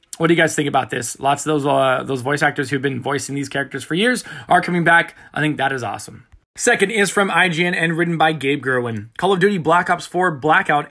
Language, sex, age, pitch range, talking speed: English, male, 20-39, 145-175 Hz, 250 wpm